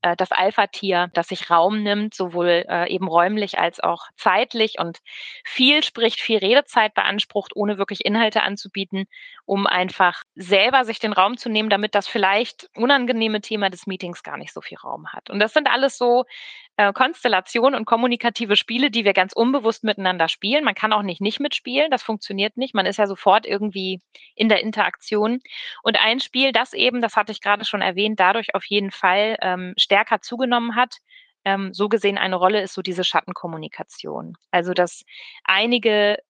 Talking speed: 175 wpm